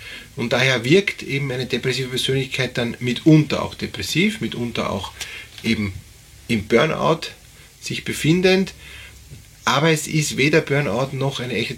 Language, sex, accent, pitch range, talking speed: German, male, Austrian, 115-145 Hz, 130 wpm